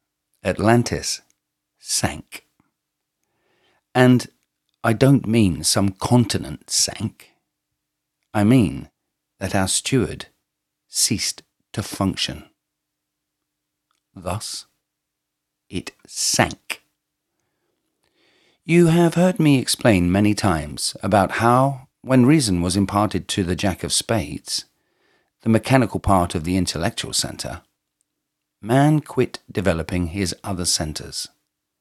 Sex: male